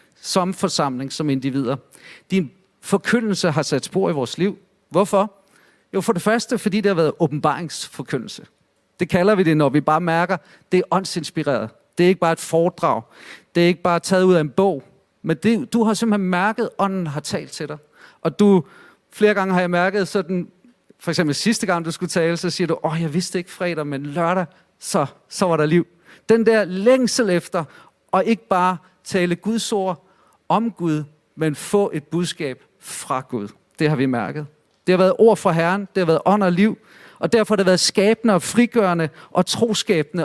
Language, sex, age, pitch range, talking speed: Danish, male, 40-59, 160-200 Hz, 205 wpm